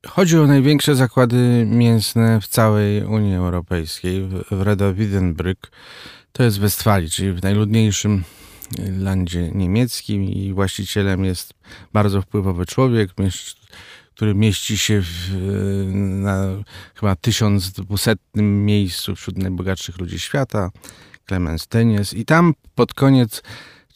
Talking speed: 110 wpm